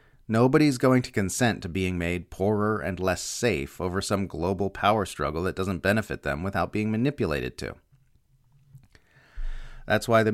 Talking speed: 155 wpm